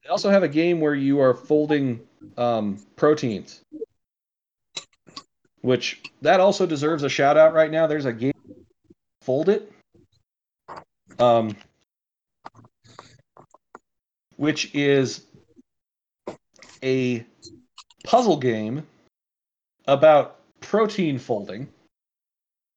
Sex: male